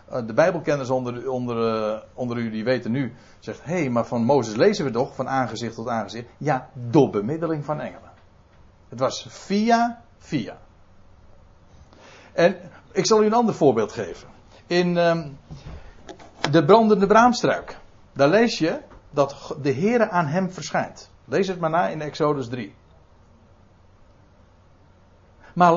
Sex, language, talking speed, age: male, Dutch, 140 wpm, 60-79